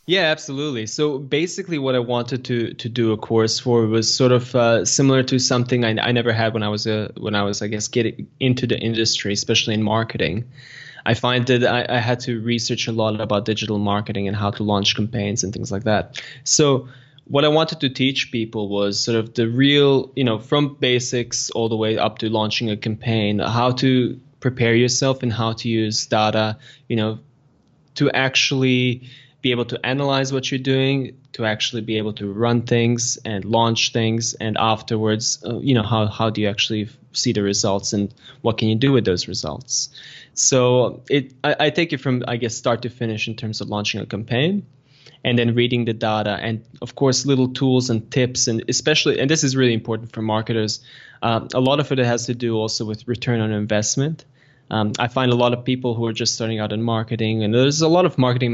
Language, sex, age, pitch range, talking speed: English, male, 20-39, 110-130 Hz, 215 wpm